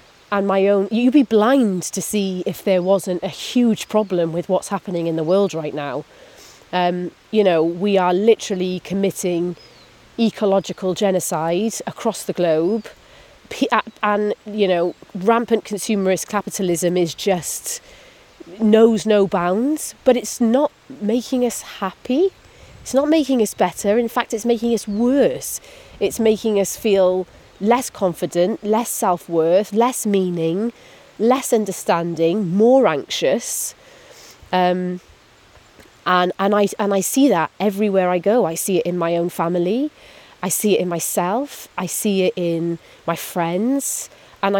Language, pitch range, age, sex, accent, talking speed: English, 175-225 Hz, 30-49, female, British, 140 wpm